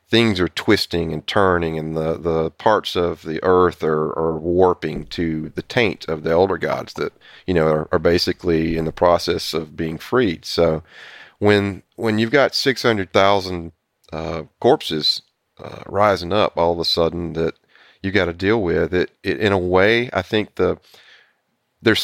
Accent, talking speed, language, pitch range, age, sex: American, 175 wpm, English, 85-100 Hz, 30-49, male